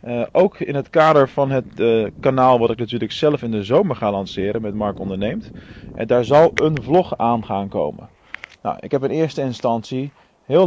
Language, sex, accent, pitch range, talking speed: Dutch, male, Dutch, 115-140 Hz, 195 wpm